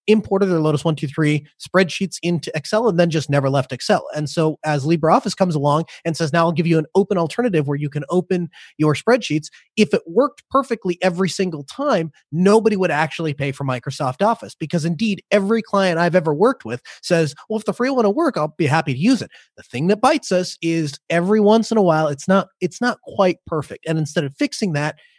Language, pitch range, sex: English, 150-195 Hz, male